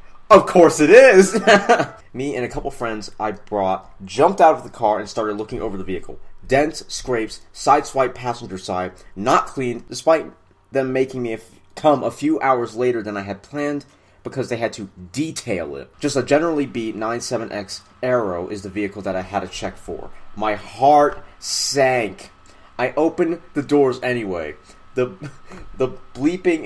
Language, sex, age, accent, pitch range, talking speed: English, male, 30-49, American, 105-150 Hz, 170 wpm